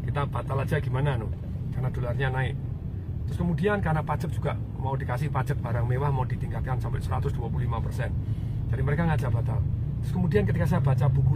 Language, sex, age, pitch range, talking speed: Indonesian, male, 40-59, 120-135 Hz, 170 wpm